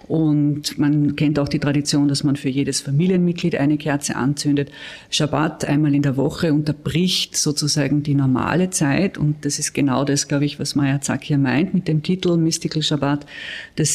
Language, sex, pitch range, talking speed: German, female, 135-155 Hz, 180 wpm